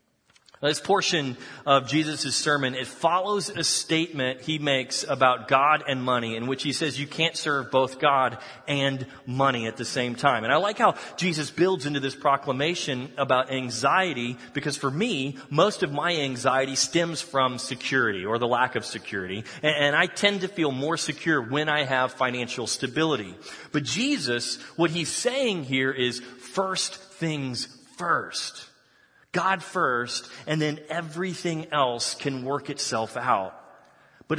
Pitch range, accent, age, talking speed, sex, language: 130-160 Hz, American, 30-49, 155 wpm, male, English